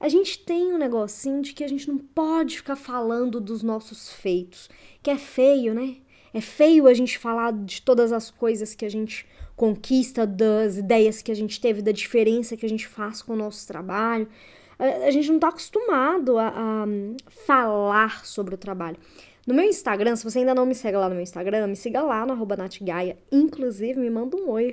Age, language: 20-39, Portuguese